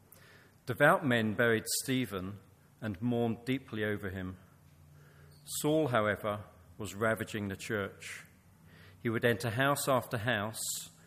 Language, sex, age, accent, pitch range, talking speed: English, male, 40-59, British, 105-125 Hz, 115 wpm